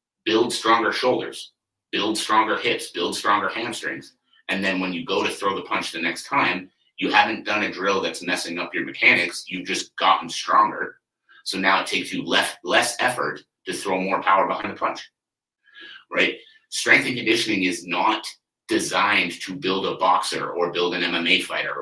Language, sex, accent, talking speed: English, male, American, 180 wpm